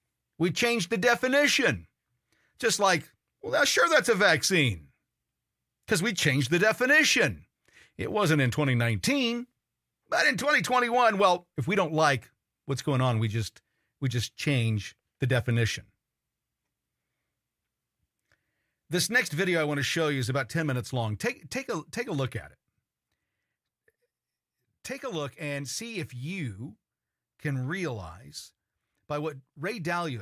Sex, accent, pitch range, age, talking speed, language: male, American, 120-160 Hz, 50-69, 145 wpm, English